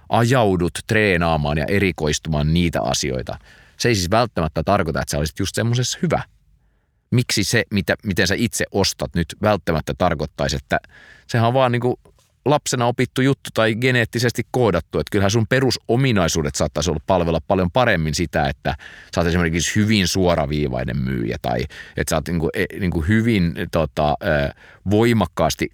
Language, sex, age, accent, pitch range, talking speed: Finnish, male, 30-49, native, 75-100 Hz, 150 wpm